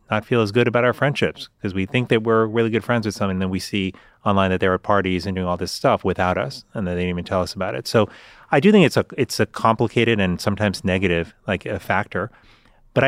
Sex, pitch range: male, 90-115 Hz